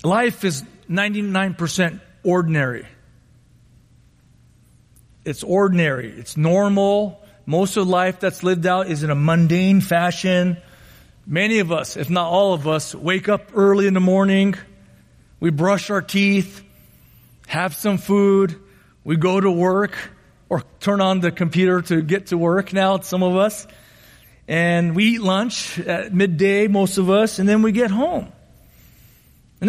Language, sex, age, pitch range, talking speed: English, male, 40-59, 180-230 Hz, 145 wpm